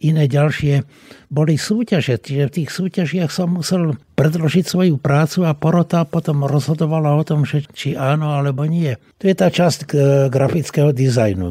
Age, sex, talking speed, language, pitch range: 60-79, male, 155 wpm, Slovak, 135-165 Hz